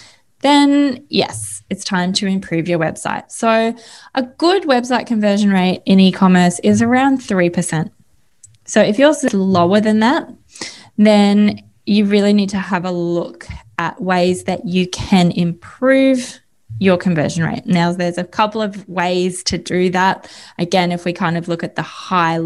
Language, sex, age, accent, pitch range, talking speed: English, female, 10-29, Australian, 175-215 Hz, 165 wpm